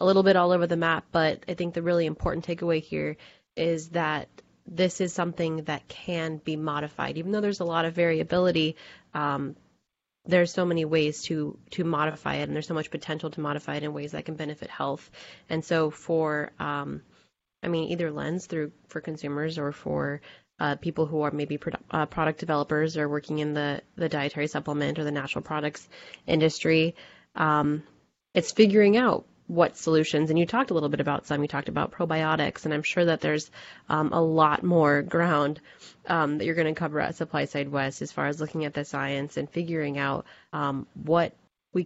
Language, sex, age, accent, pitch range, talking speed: English, female, 20-39, American, 150-170 Hz, 195 wpm